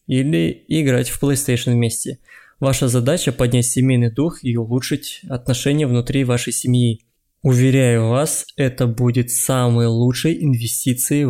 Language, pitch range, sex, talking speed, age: Russian, 125-145 Hz, male, 120 wpm, 20-39